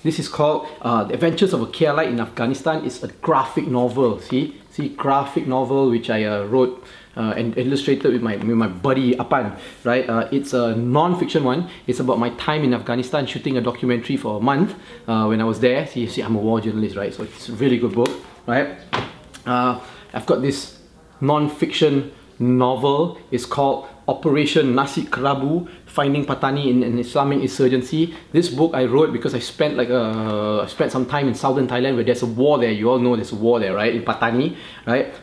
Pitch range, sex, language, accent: 120-145 Hz, male, English, Malaysian